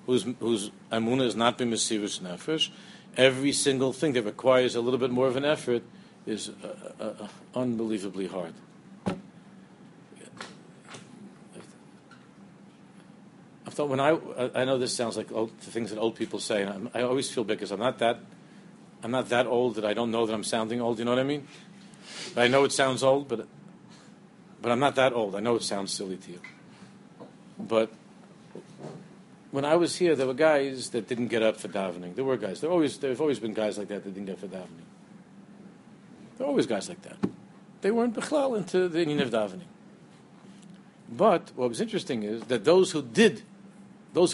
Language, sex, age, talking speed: English, male, 50-69, 190 wpm